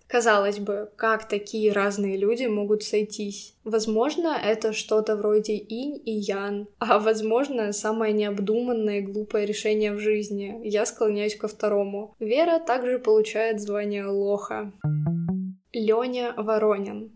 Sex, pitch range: female, 205-230 Hz